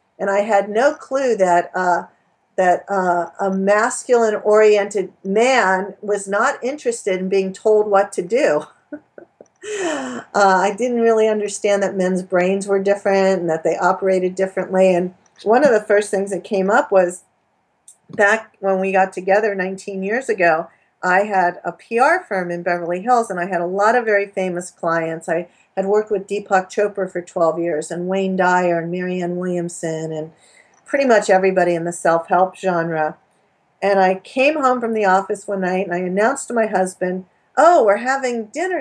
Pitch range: 185-230 Hz